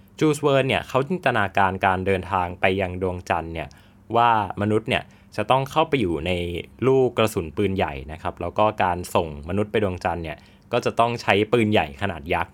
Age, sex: 20-39, male